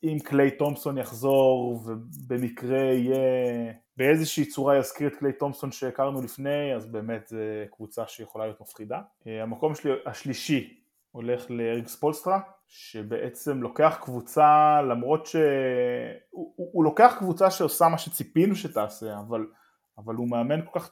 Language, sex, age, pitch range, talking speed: Hebrew, male, 20-39, 110-150 Hz, 130 wpm